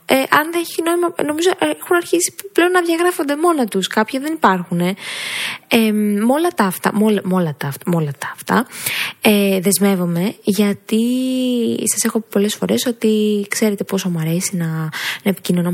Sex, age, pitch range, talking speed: female, 20-39, 185-235 Hz, 170 wpm